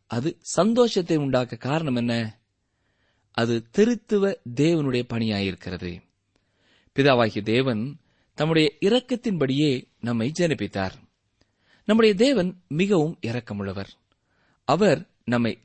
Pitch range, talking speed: 110-185 Hz, 80 wpm